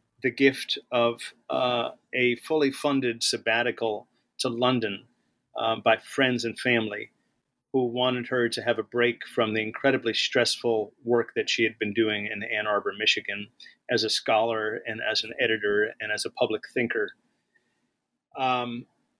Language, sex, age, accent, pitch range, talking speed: English, male, 40-59, American, 120-140 Hz, 155 wpm